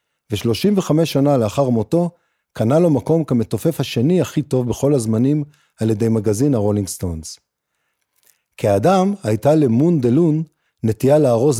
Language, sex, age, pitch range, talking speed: Hebrew, male, 40-59, 110-155 Hz, 125 wpm